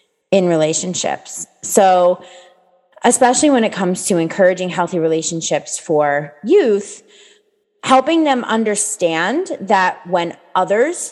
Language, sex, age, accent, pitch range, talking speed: English, female, 20-39, American, 165-230 Hz, 105 wpm